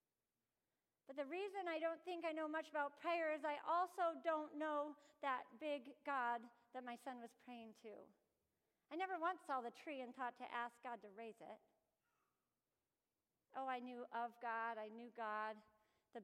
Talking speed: 175 wpm